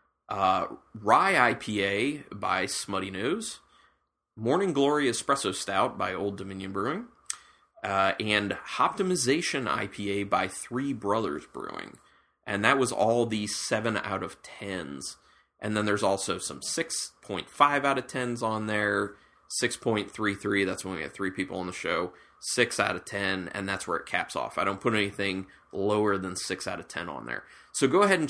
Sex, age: male, 20-39